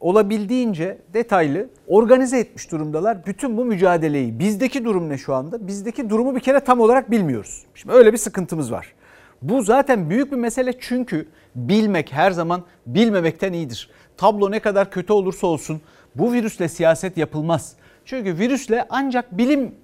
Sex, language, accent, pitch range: male, Turkish, native, 160-235 Hz